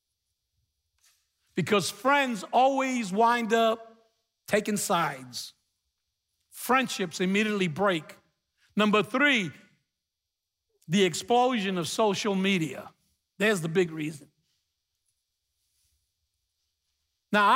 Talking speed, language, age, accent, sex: 75 wpm, English, 60-79, American, male